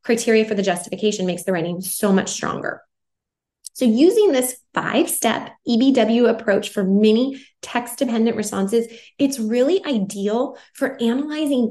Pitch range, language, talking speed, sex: 215-275 Hz, English, 130 wpm, female